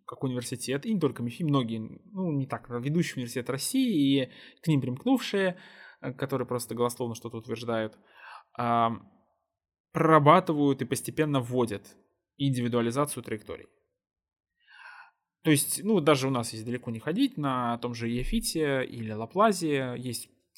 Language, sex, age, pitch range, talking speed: Russian, male, 20-39, 120-160 Hz, 135 wpm